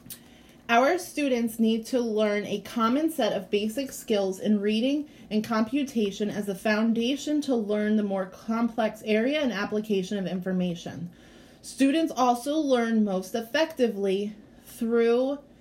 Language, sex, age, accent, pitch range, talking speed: English, female, 30-49, American, 205-255 Hz, 130 wpm